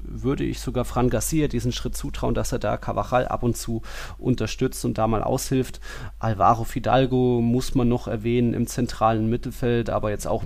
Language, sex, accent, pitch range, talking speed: German, male, German, 105-125 Hz, 185 wpm